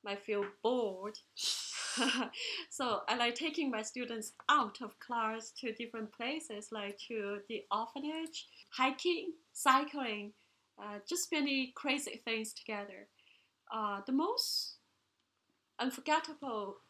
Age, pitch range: 30-49, 215-275 Hz